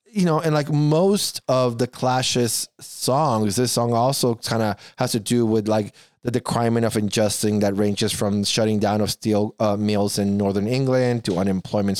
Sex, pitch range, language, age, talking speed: male, 95-120 Hz, English, 20-39, 190 wpm